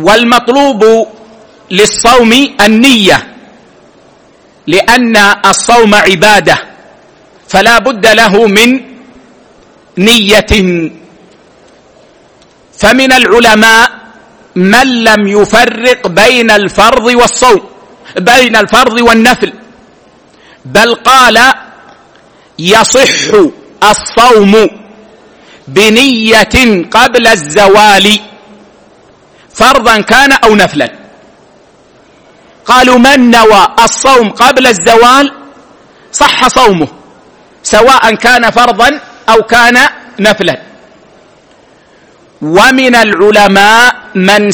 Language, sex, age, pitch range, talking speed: Arabic, male, 50-69, 210-245 Hz, 65 wpm